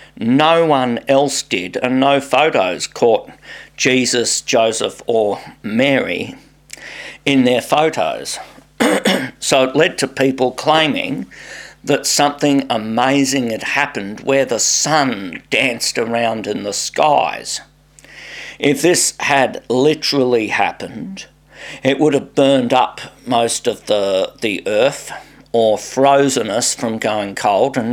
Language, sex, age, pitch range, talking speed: English, male, 50-69, 120-145 Hz, 120 wpm